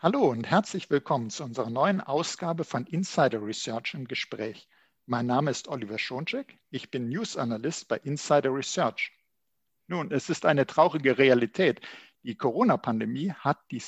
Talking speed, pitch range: 150 wpm, 120-170 Hz